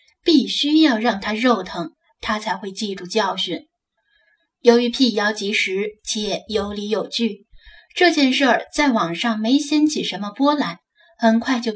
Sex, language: female, Chinese